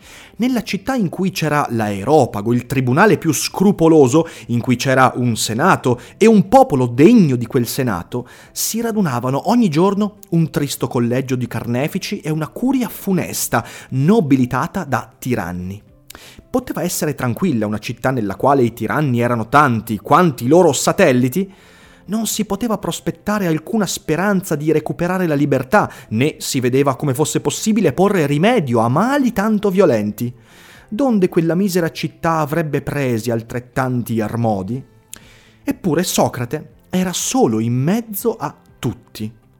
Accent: native